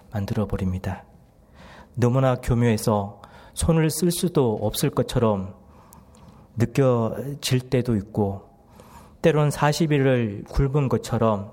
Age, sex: 40-59, male